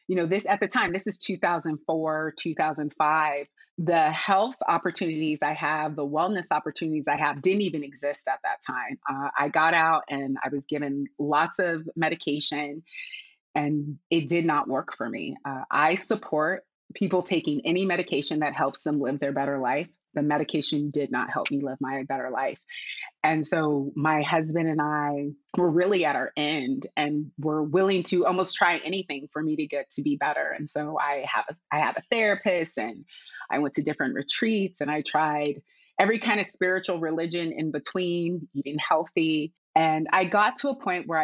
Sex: female